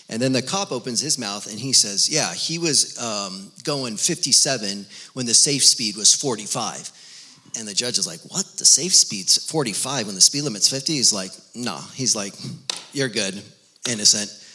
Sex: male